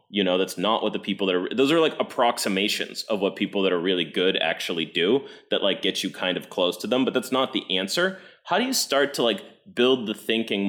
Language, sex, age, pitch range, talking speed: English, male, 30-49, 90-110 Hz, 255 wpm